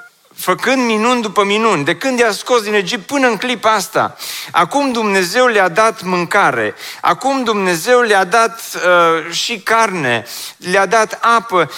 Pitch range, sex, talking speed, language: 140-195 Hz, male, 150 wpm, Romanian